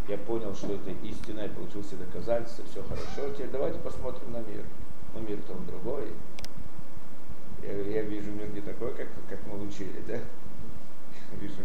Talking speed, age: 155 wpm, 50-69